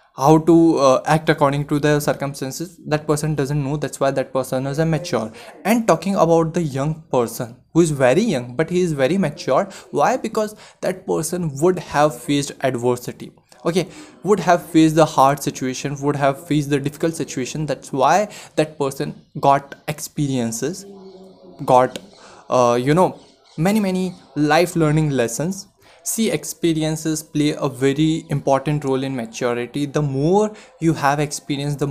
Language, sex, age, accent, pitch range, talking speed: Hindi, male, 20-39, native, 135-175 Hz, 160 wpm